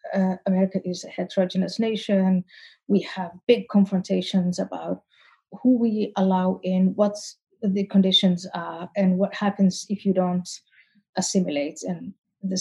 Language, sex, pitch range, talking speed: English, female, 185-215 Hz, 135 wpm